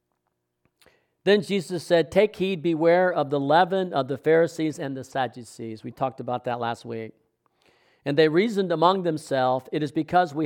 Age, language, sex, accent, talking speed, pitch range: 50-69, English, male, American, 170 wpm, 135-175 Hz